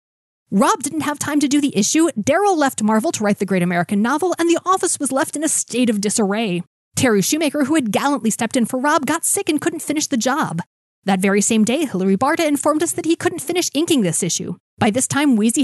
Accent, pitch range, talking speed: American, 200-310 Hz, 240 wpm